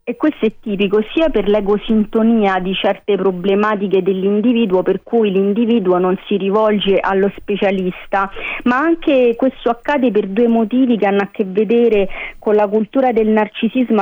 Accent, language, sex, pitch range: native, Italian, female, 200-230 Hz